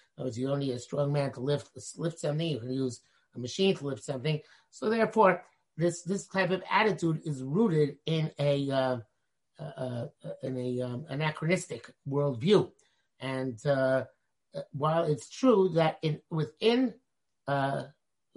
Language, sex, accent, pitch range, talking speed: English, male, American, 135-165 Hz, 145 wpm